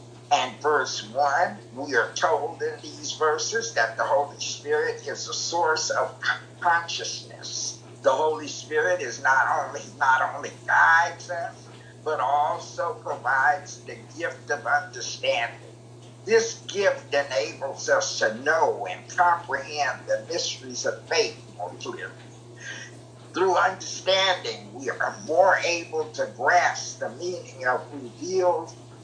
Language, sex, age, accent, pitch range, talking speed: English, male, 60-79, American, 155-260 Hz, 125 wpm